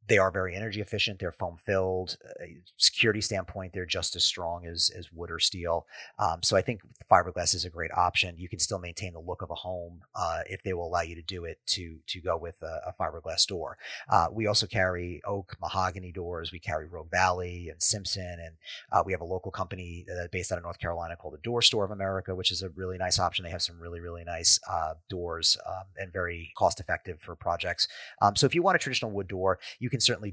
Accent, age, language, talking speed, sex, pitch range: American, 30-49, English, 235 wpm, male, 85-100 Hz